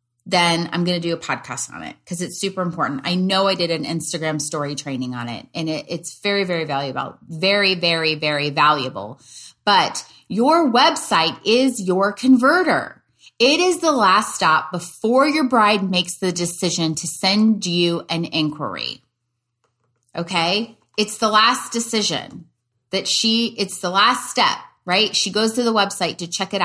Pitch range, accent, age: 165-220 Hz, American, 30-49